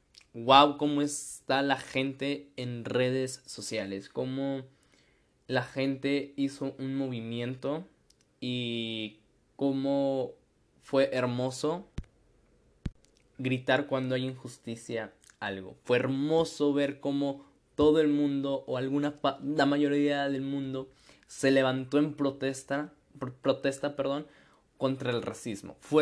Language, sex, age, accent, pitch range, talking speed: Spanish, male, 20-39, Mexican, 130-145 Hz, 105 wpm